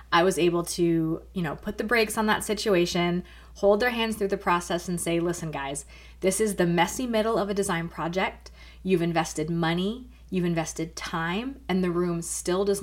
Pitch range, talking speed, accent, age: 165-205 Hz, 195 wpm, American, 20-39